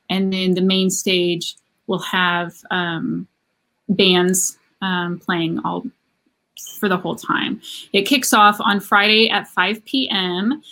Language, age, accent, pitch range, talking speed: English, 30-49, American, 185-220 Hz, 135 wpm